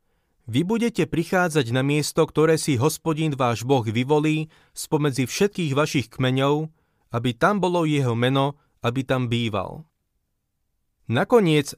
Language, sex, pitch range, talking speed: Slovak, male, 120-155 Hz, 120 wpm